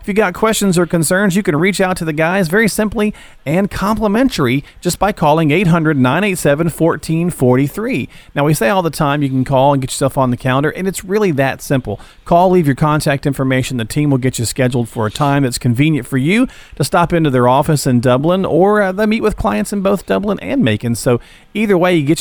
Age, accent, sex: 40-59, American, male